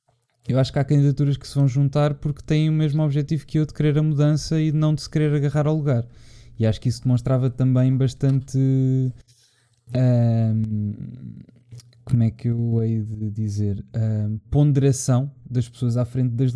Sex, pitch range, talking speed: male, 115-140 Hz, 185 wpm